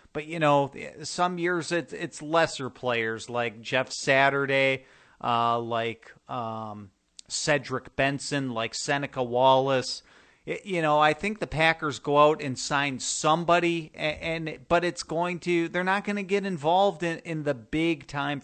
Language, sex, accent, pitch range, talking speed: English, male, American, 130-170 Hz, 155 wpm